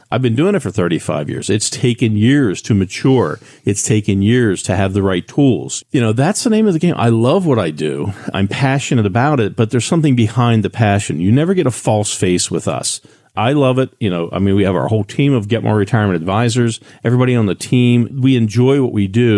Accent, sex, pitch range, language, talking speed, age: American, male, 100-125 Hz, English, 240 wpm, 50-69